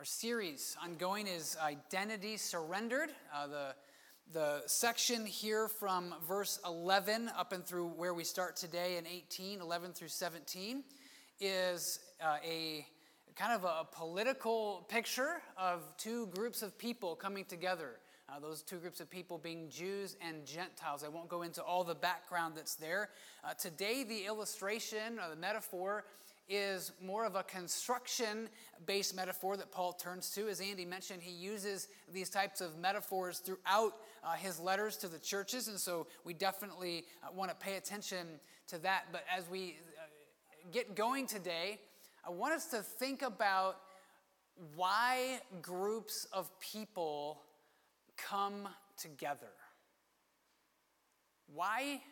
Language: English